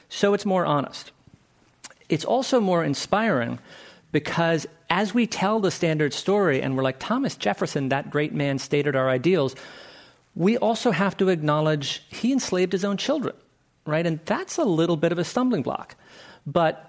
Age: 40-59